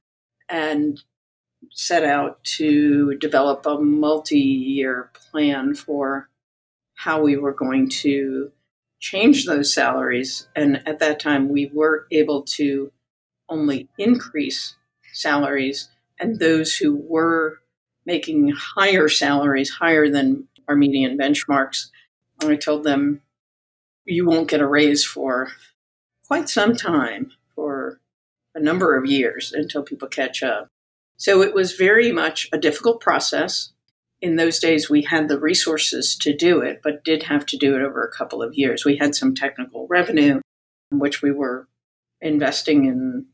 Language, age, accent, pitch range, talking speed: English, 50-69, American, 140-160 Hz, 140 wpm